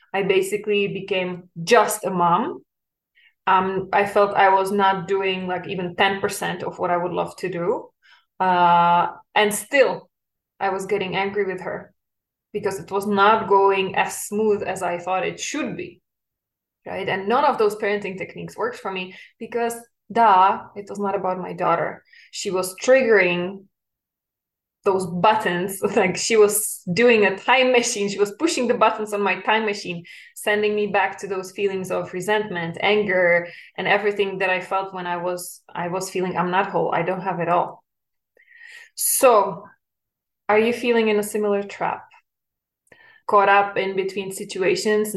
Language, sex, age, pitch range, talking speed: English, female, 20-39, 185-215 Hz, 165 wpm